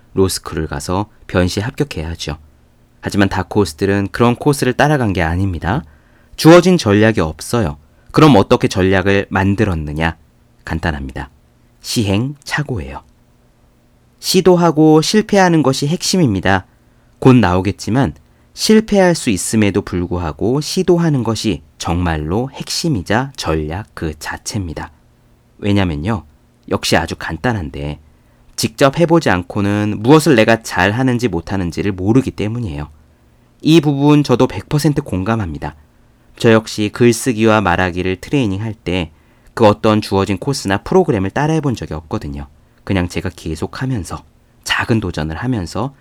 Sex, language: male, Korean